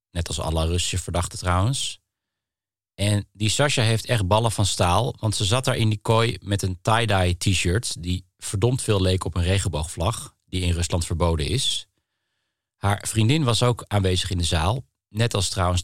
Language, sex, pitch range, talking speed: Dutch, male, 90-120 Hz, 180 wpm